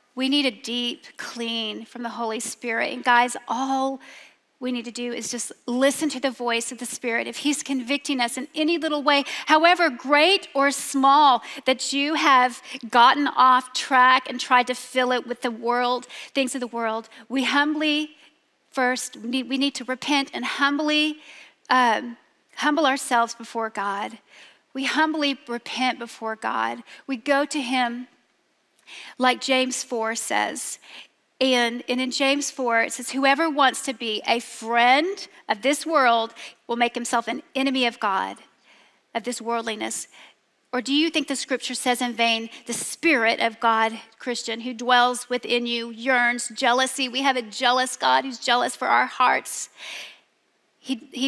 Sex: female